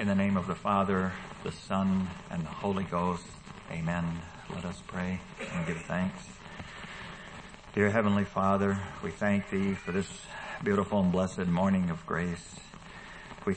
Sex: male